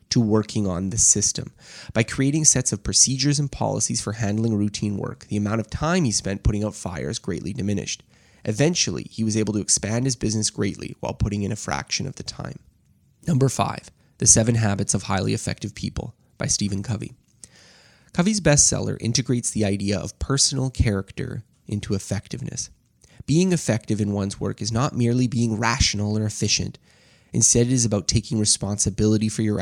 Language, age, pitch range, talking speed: English, 20-39, 105-130 Hz, 175 wpm